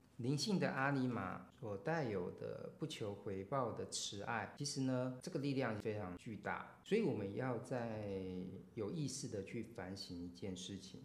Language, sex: Chinese, male